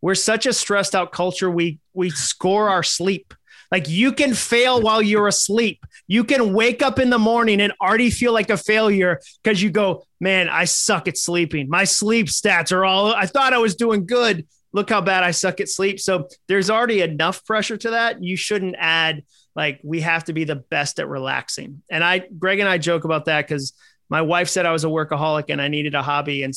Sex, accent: male, American